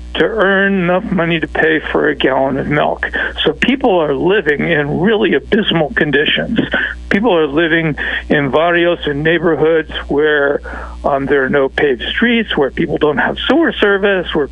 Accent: American